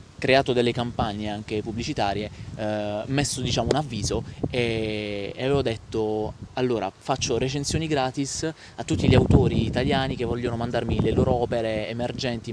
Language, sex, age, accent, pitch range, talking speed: Italian, male, 20-39, native, 110-130 Hz, 140 wpm